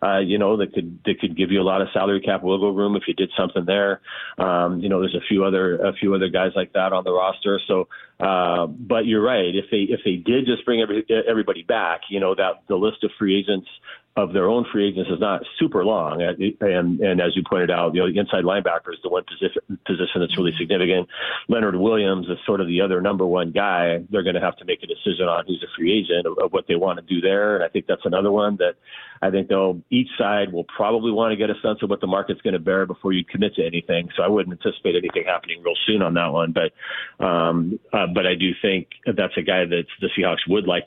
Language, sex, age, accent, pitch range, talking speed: English, male, 40-59, American, 90-105 Hz, 260 wpm